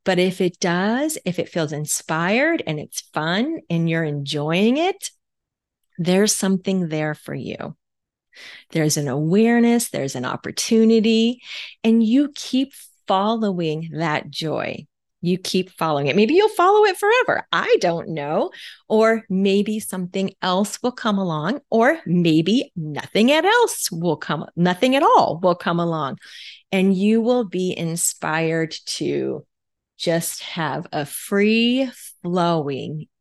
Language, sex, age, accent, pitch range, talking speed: English, female, 30-49, American, 160-225 Hz, 135 wpm